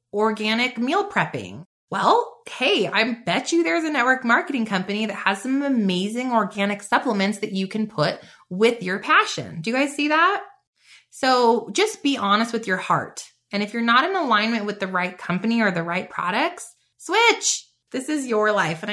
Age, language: 20-39, English